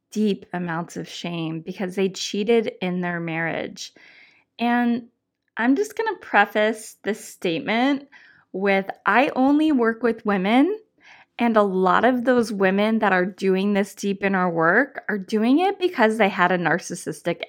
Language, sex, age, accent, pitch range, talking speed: English, female, 20-39, American, 195-260 Hz, 160 wpm